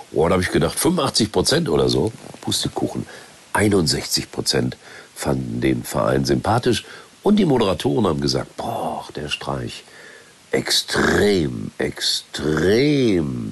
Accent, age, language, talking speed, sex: German, 60-79, German, 115 wpm, male